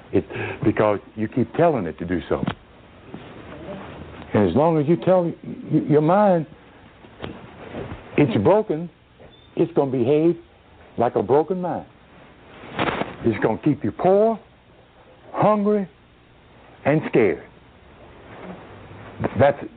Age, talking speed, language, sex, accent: 60-79, 110 wpm, English, male, American